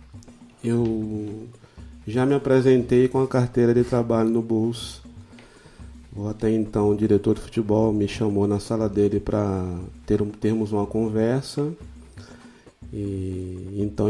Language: Portuguese